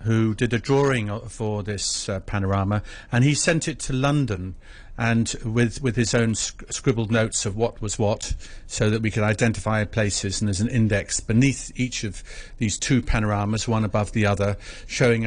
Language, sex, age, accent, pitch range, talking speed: English, male, 50-69, British, 105-135 Hz, 180 wpm